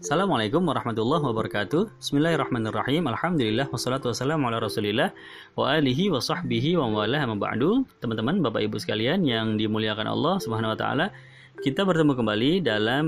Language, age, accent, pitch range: Indonesian, 20-39, native, 110-150 Hz